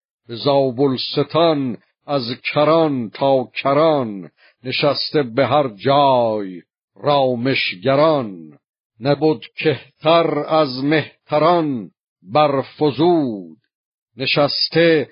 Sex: male